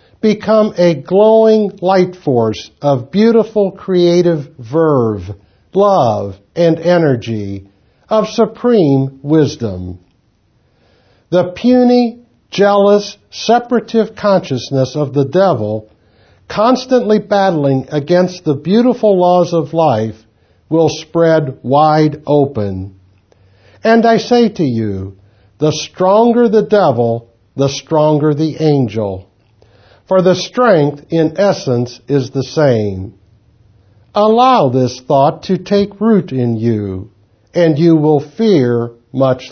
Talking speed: 105 wpm